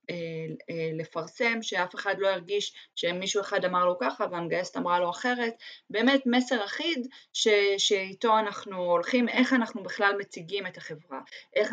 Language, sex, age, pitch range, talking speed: Hebrew, female, 20-39, 185-245 Hz, 145 wpm